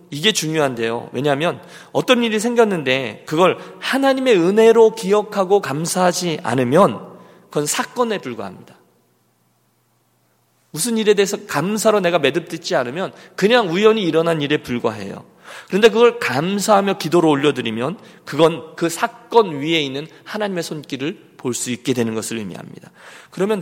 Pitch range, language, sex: 125-195 Hz, Korean, male